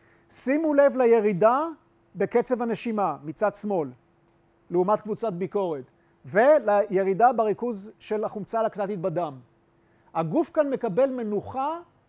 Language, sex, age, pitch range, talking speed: Hebrew, male, 40-59, 185-250 Hz, 100 wpm